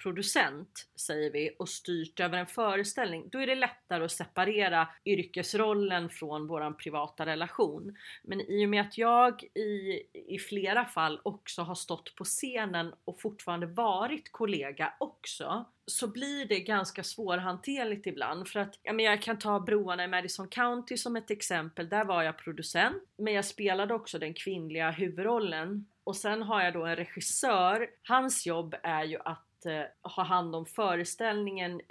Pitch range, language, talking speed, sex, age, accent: 165-215 Hz, Swedish, 160 wpm, female, 30-49, native